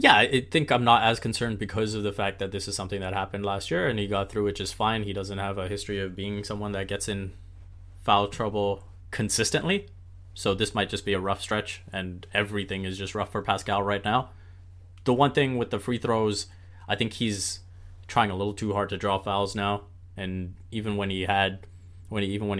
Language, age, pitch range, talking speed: English, 20-39, 95-105 Hz, 225 wpm